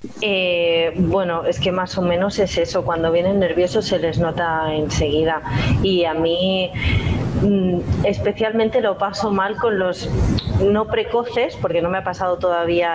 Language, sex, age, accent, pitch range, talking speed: Spanish, female, 30-49, Spanish, 160-190 Hz, 155 wpm